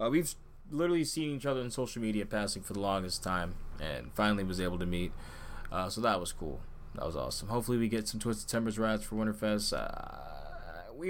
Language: English